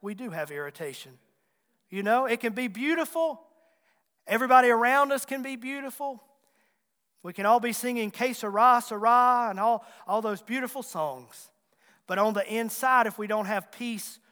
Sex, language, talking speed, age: male, English, 155 wpm, 40-59